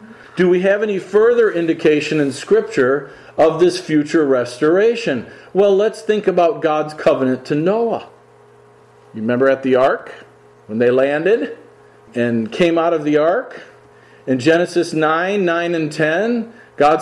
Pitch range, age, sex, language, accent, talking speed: 140-210 Hz, 50-69, male, English, American, 145 wpm